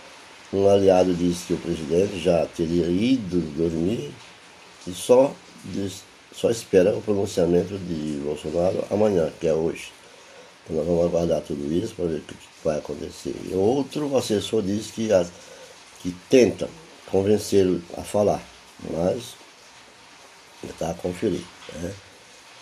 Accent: Brazilian